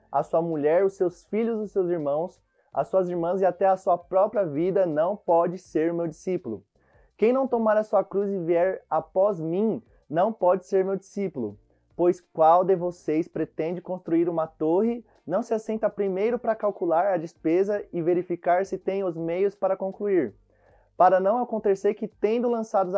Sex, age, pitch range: male, 20-39, 170-205 Hz